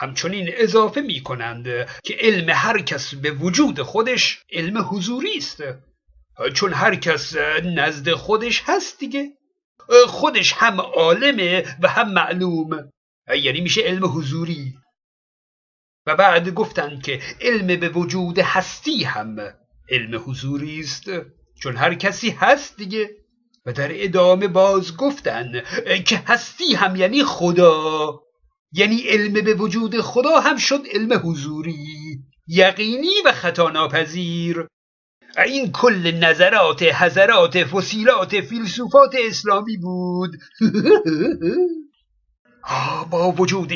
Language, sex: Persian, male